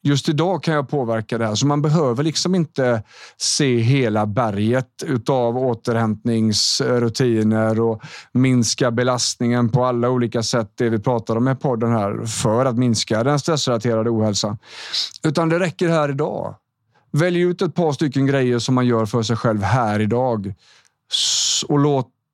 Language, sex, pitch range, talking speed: Swedish, male, 115-140 Hz, 155 wpm